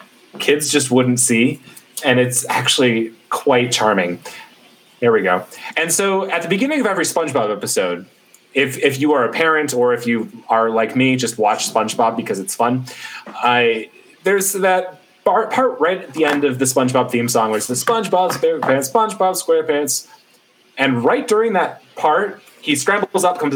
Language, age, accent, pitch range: English, 30-49, American, 120-165 Hz